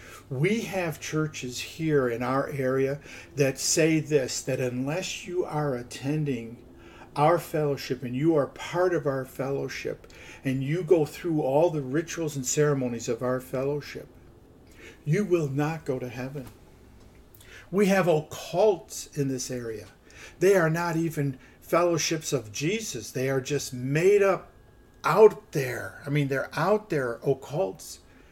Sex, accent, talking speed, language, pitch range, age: male, American, 145 wpm, English, 125-170 Hz, 50-69